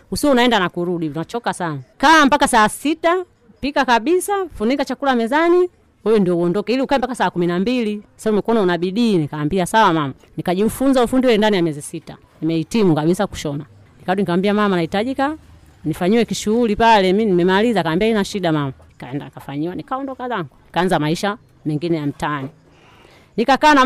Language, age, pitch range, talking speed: Swahili, 30-49, 165-235 Hz, 170 wpm